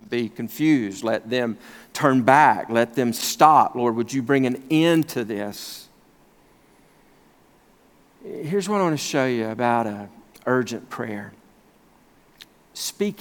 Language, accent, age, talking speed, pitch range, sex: English, American, 50-69, 130 wpm, 130-205 Hz, male